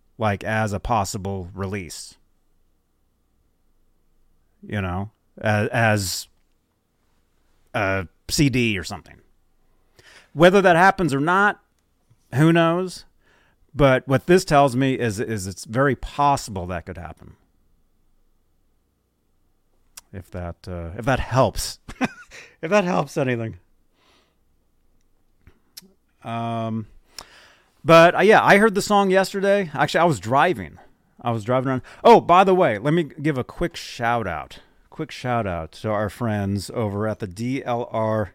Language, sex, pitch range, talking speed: English, male, 95-140 Hz, 125 wpm